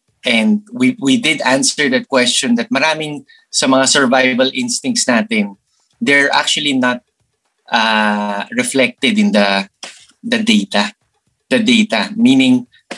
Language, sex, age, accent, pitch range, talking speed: Filipino, male, 20-39, native, 145-240 Hz, 120 wpm